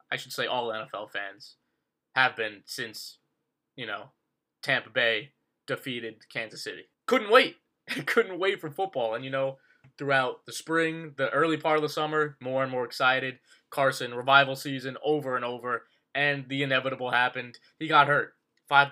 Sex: male